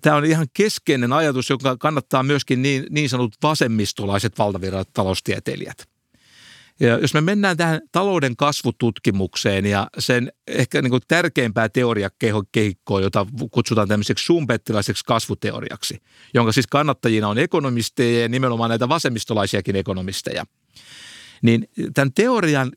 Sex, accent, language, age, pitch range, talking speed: male, native, Finnish, 60-79, 115-155 Hz, 115 wpm